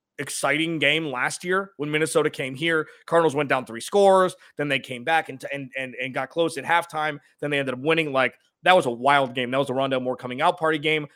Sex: male